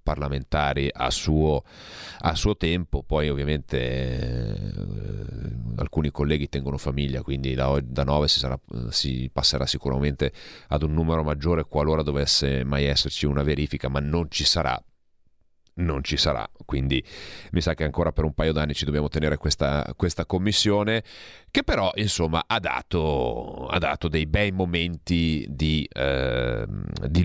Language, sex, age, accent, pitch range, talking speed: Italian, male, 40-59, native, 70-80 Hz, 150 wpm